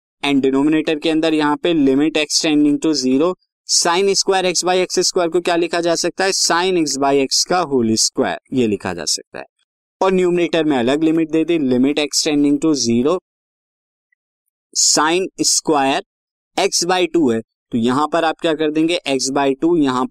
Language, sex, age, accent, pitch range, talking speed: Hindi, male, 20-39, native, 130-170 Hz, 125 wpm